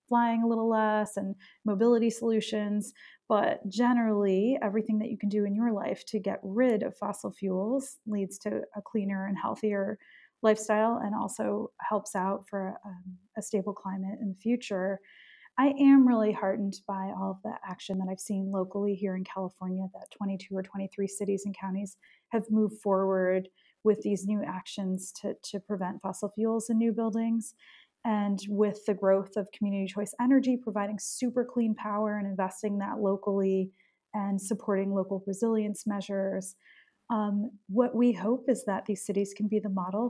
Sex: female